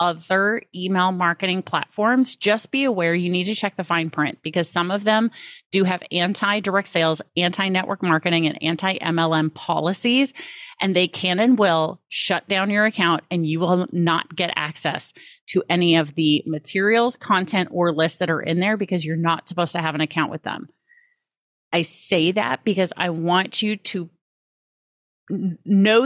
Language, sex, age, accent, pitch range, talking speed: English, female, 30-49, American, 165-195 Hz, 170 wpm